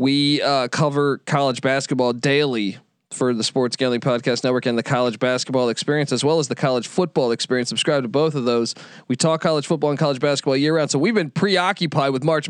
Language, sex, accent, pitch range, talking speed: English, male, American, 130-170 Hz, 210 wpm